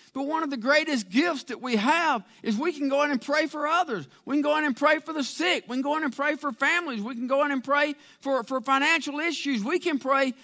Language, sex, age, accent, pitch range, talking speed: English, male, 50-69, American, 240-315 Hz, 275 wpm